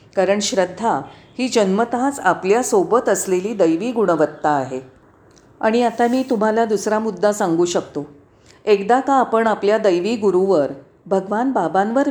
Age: 40-59